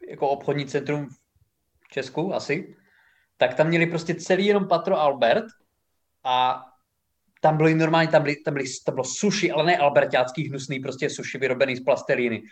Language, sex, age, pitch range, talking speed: Czech, male, 20-39, 140-180 Hz, 175 wpm